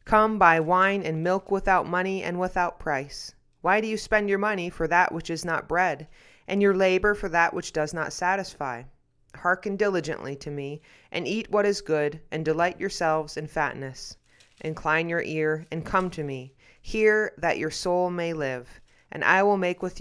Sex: female